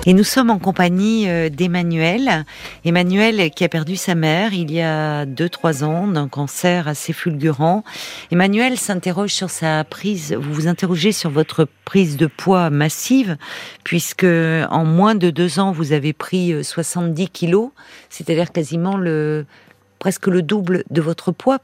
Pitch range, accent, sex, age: 160-190 Hz, French, female, 50-69